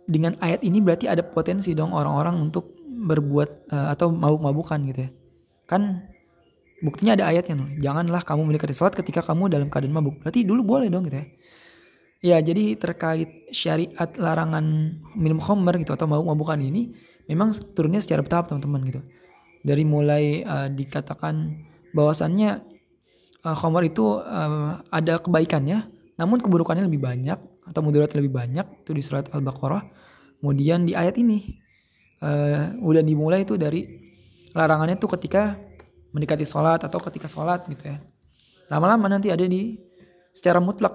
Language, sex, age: Indonesian, male, 20-39